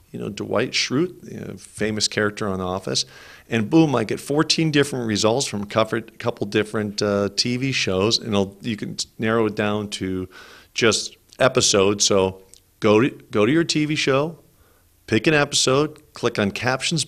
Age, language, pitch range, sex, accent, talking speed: 50-69, English, 100-135 Hz, male, American, 165 wpm